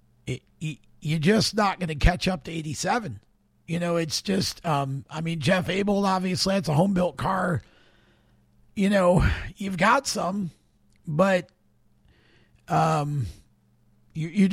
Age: 50-69